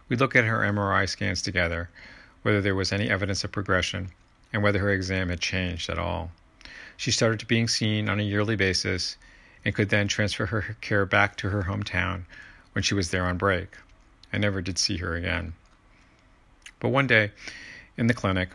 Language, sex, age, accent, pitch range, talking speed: English, male, 50-69, American, 90-105 Hz, 190 wpm